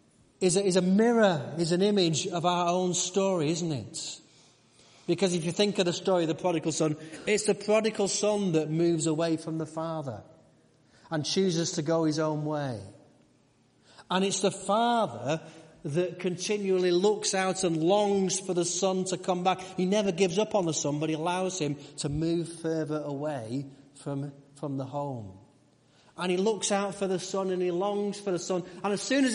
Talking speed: 190 wpm